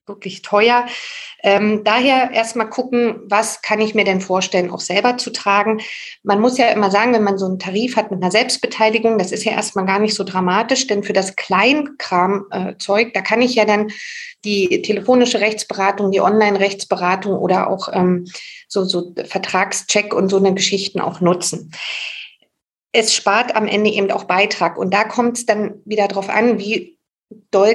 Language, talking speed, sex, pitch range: German, 180 wpm, female, 195-230 Hz